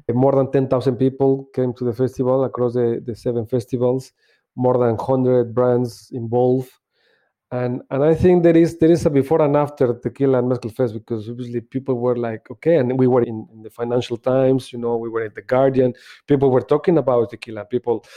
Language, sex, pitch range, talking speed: English, male, 120-135 Hz, 200 wpm